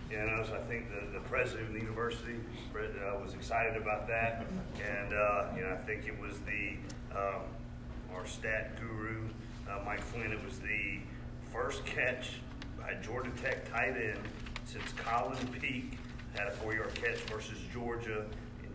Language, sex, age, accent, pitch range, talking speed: English, male, 40-59, American, 105-115 Hz, 170 wpm